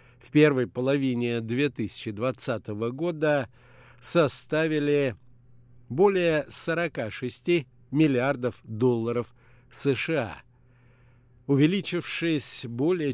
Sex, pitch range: male, 120-150 Hz